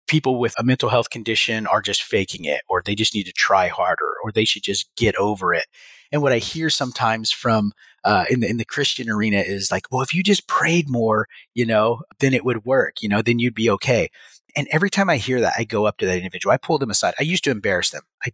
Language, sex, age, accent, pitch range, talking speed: English, male, 30-49, American, 110-145 Hz, 260 wpm